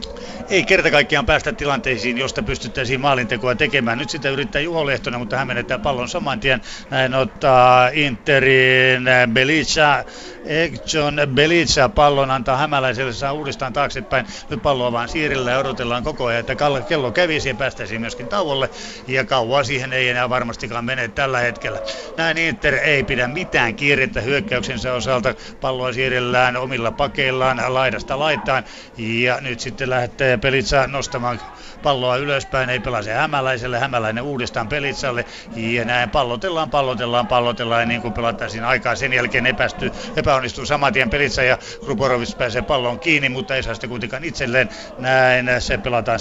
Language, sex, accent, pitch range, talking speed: Finnish, male, native, 120-140 Hz, 145 wpm